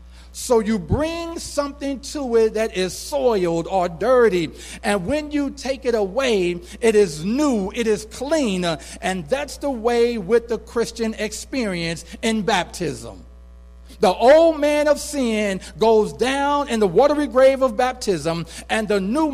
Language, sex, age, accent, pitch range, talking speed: English, male, 50-69, American, 165-235 Hz, 150 wpm